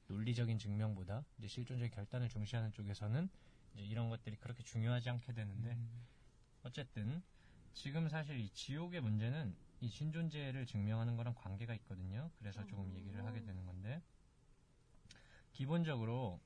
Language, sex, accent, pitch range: Korean, male, native, 105-140 Hz